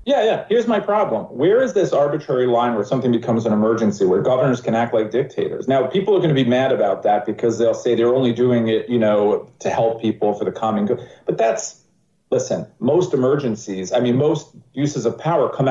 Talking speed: 220 wpm